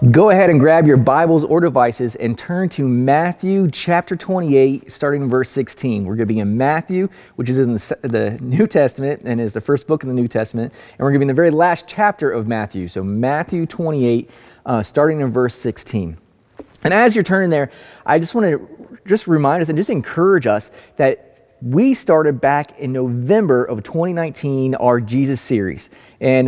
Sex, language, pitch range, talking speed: male, English, 125-170 Hz, 200 wpm